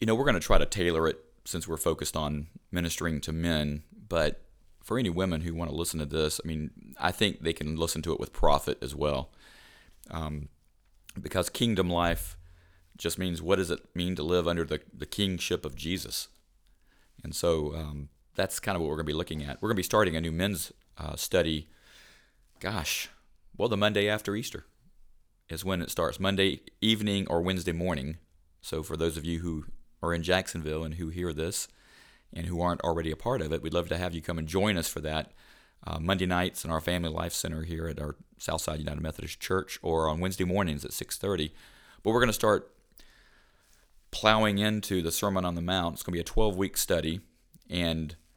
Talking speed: 210 wpm